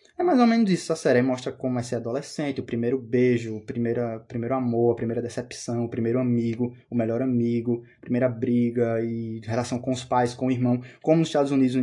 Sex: male